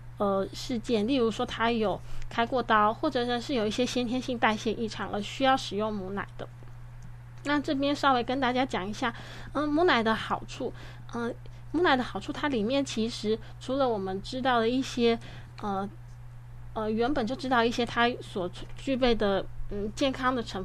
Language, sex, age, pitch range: Chinese, female, 20-39, 190-260 Hz